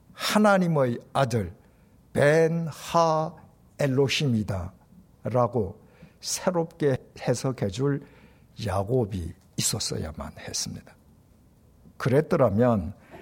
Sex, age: male, 60-79